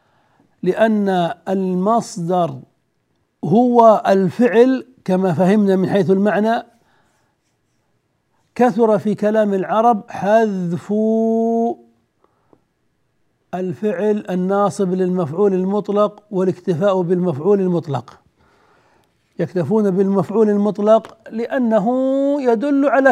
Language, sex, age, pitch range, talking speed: Arabic, male, 60-79, 170-210 Hz, 70 wpm